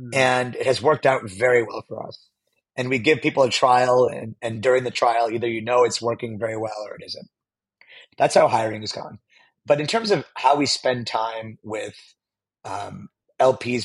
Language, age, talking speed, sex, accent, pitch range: English, 30-49, 200 wpm, male, American, 115-135 Hz